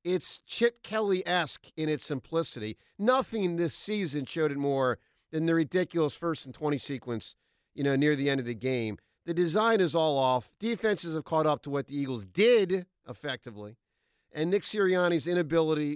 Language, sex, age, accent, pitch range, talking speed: English, male, 50-69, American, 120-170 Hz, 175 wpm